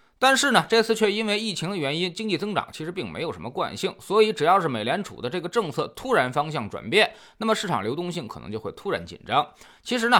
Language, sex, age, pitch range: Chinese, male, 20-39, 145-220 Hz